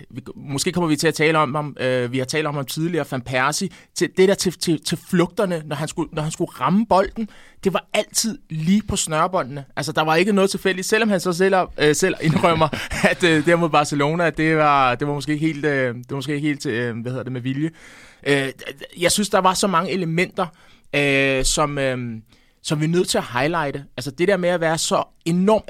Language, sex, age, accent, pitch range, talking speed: Danish, male, 20-39, native, 140-175 Hz, 235 wpm